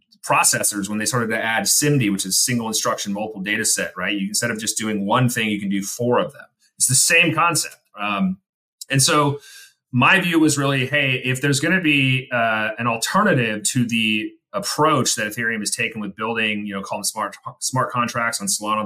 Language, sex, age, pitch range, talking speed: English, male, 30-49, 110-150 Hz, 210 wpm